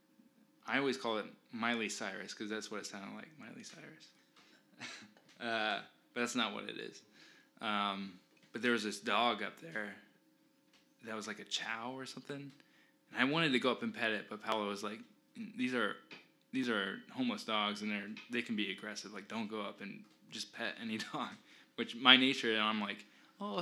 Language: English